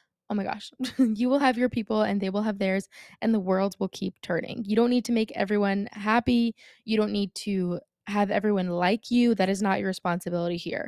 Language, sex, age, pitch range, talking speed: English, female, 20-39, 185-225 Hz, 220 wpm